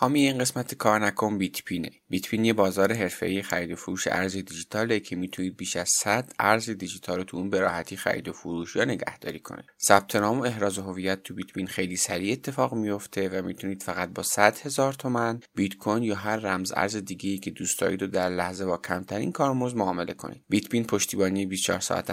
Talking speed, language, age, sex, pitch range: 185 wpm, Persian, 30-49, male, 95-110 Hz